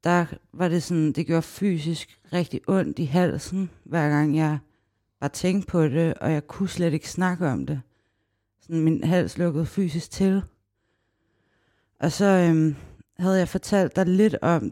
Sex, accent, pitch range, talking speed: female, native, 145-185 Hz, 165 wpm